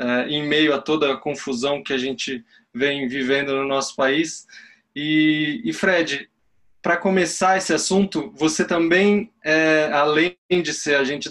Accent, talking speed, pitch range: Brazilian, 150 wpm, 140-165 Hz